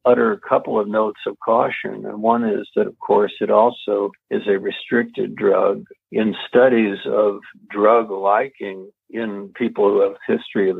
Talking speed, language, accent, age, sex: 165 wpm, English, American, 50-69, male